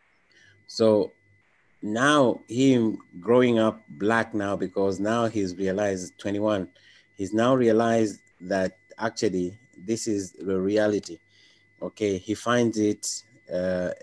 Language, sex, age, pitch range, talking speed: English, male, 30-49, 95-110 Hz, 110 wpm